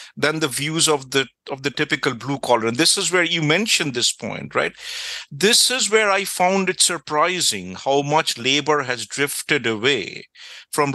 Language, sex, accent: English, male, Indian